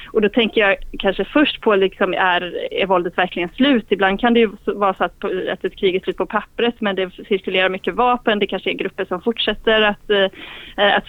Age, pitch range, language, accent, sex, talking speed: 30-49, 190-225 Hz, Swedish, native, female, 215 wpm